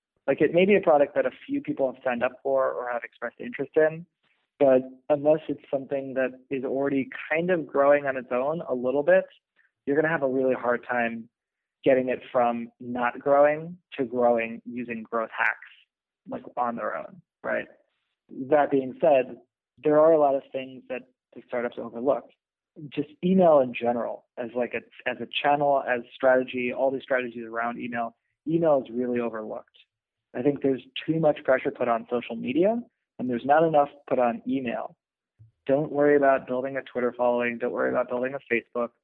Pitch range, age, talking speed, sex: 120-145 Hz, 20-39, 185 wpm, male